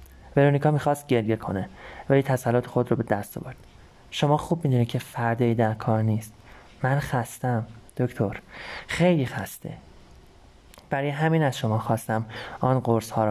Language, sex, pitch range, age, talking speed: Persian, male, 105-135 Hz, 30-49, 155 wpm